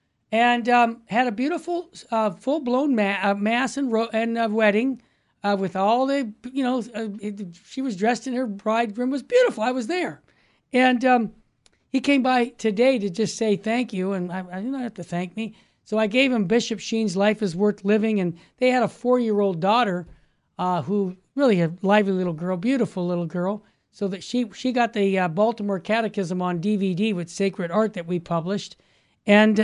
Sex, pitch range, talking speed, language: male, 200-255 Hz, 205 wpm, English